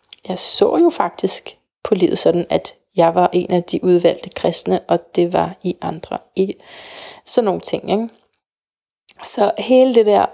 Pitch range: 185-225 Hz